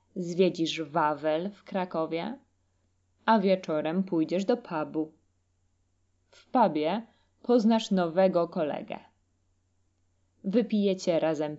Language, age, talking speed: Polish, 20-39, 85 wpm